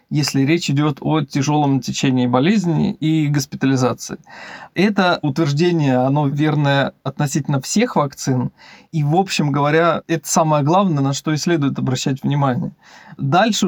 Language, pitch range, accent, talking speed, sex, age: Russian, 140-175 Hz, native, 130 wpm, male, 20-39